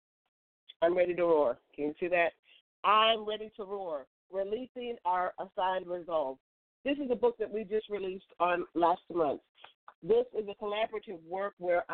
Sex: female